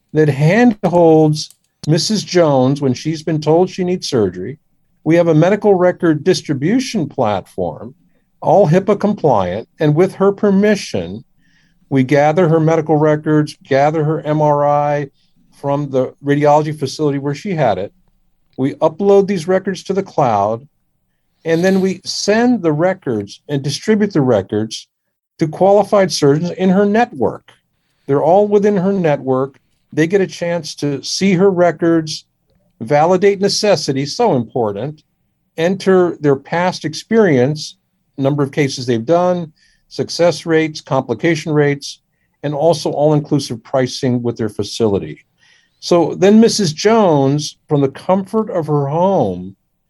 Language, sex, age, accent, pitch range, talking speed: English, male, 50-69, American, 145-190 Hz, 135 wpm